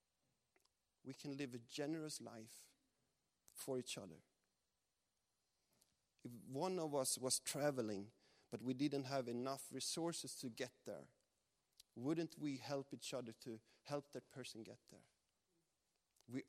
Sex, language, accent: male, Danish, Swedish